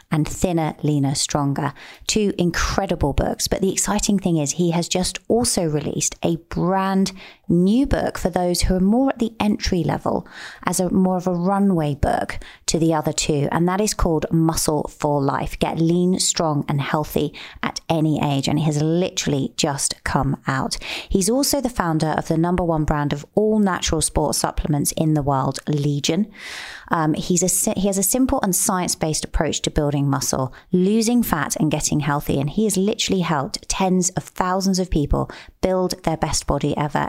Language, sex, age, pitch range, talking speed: English, female, 30-49, 150-185 Hz, 185 wpm